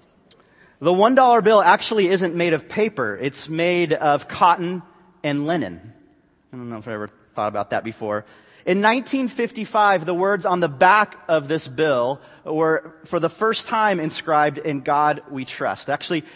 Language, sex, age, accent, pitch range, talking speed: English, male, 30-49, American, 140-190 Hz, 170 wpm